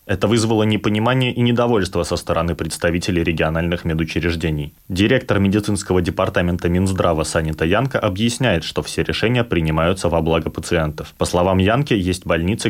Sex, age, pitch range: male, 20-39, 80-95 Hz